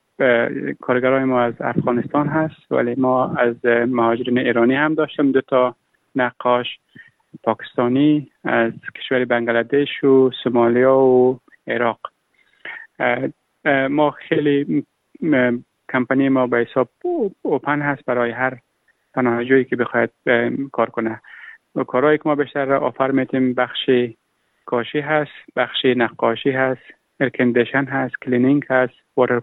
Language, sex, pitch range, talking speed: Persian, male, 120-145 Hz, 110 wpm